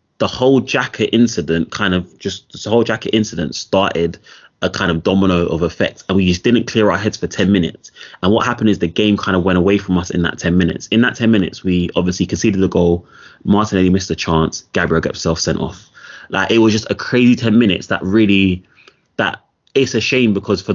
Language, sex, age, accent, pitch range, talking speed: English, male, 20-39, British, 90-110 Hz, 225 wpm